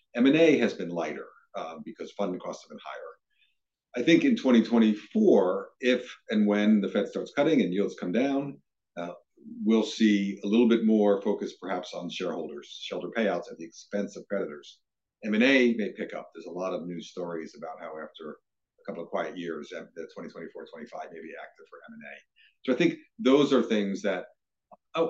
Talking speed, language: 185 wpm, English